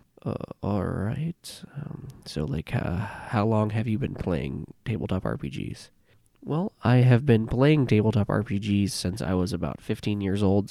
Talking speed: 160 wpm